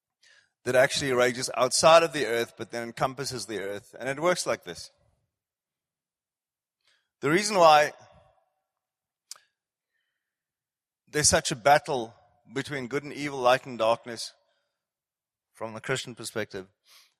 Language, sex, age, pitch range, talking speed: English, male, 30-49, 120-150 Hz, 120 wpm